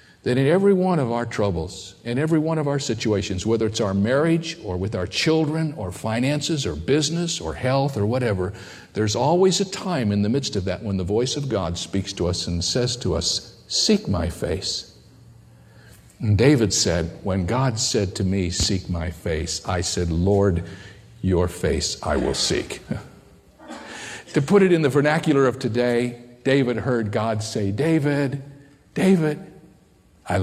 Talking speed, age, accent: 170 wpm, 50-69, American